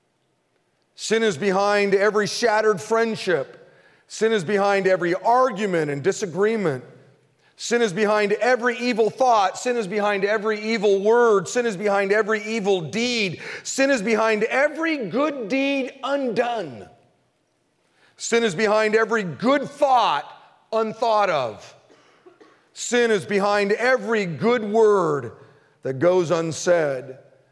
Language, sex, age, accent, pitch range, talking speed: English, male, 40-59, American, 170-235 Hz, 120 wpm